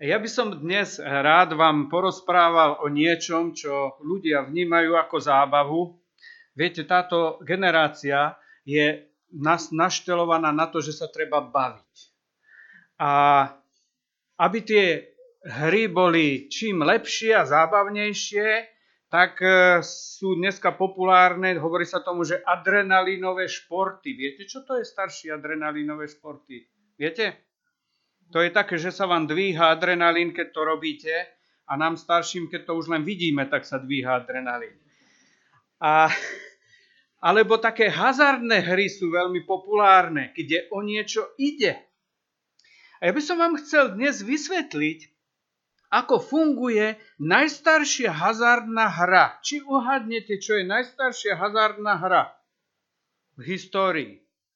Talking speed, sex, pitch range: 120 wpm, male, 160-215 Hz